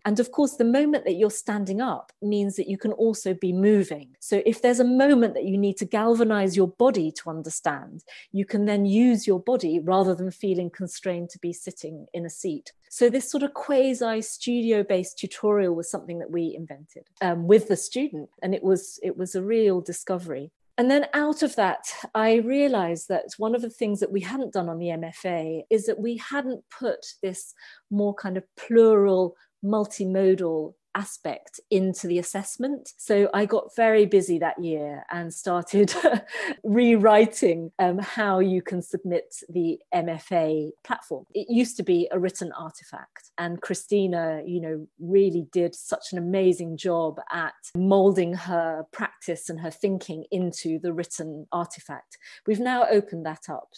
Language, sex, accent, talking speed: English, female, British, 170 wpm